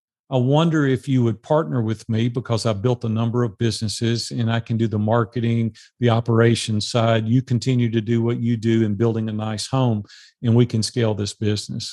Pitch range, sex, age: 115-135 Hz, male, 50-69